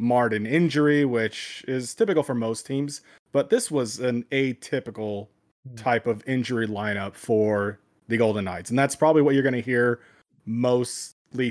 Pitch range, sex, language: 115-140 Hz, male, English